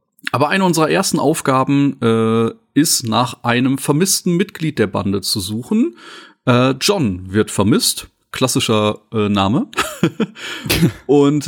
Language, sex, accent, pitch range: German, male, German, 120-155 Hz